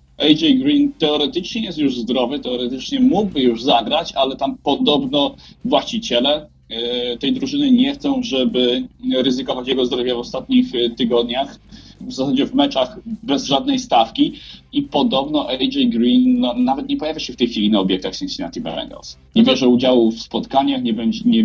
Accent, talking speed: native, 150 wpm